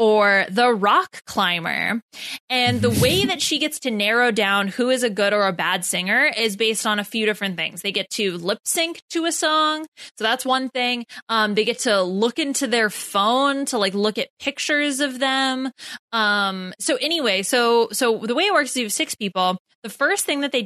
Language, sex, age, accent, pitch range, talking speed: English, female, 20-39, American, 205-285 Hz, 215 wpm